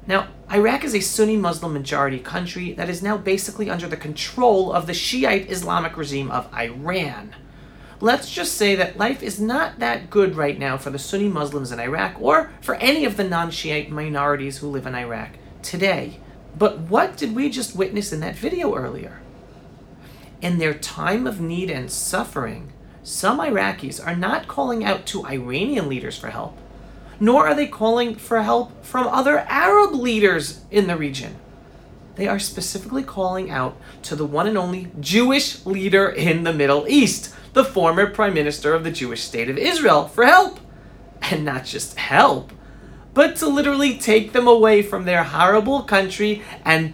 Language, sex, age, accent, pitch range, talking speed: English, male, 40-59, American, 150-220 Hz, 170 wpm